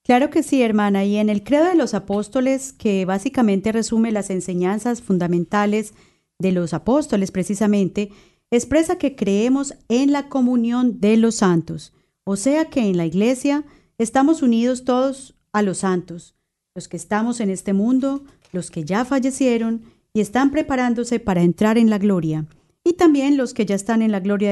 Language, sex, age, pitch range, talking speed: Spanish, female, 30-49, 195-260 Hz, 170 wpm